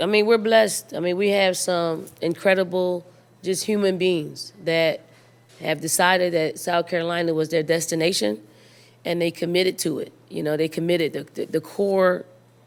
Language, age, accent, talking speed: English, 20-39, American, 165 wpm